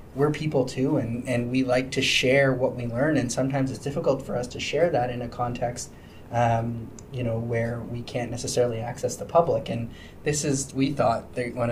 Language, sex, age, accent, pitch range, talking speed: English, male, 20-39, American, 120-135 Hz, 205 wpm